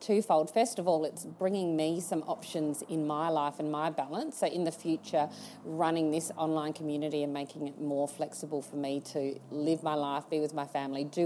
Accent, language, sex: Australian, English, female